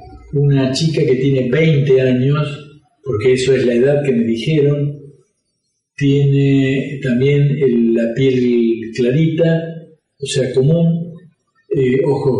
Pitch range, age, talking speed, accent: 130-155 Hz, 40-59, 120 wpm, Argentinian